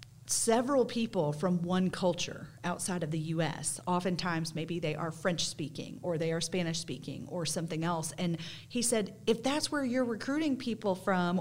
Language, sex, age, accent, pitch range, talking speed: English, female, 40-59, American, 165-215 Hz, 165 wpm